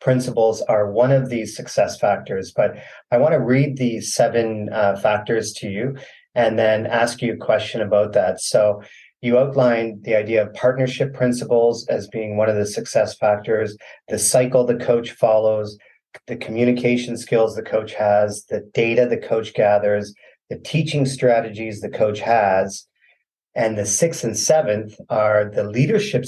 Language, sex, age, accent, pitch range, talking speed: English, male, 40-59, American, 105-125 Hz, 160 wpm